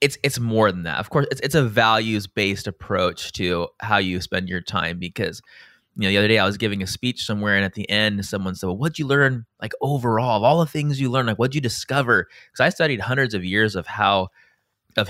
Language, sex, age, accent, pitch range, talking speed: English, male, 20-39, American, 95-120 Hz, 245 wpm